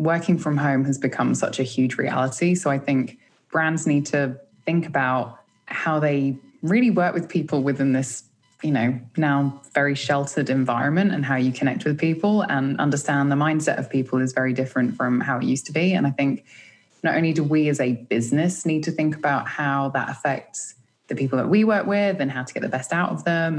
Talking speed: 215 wpm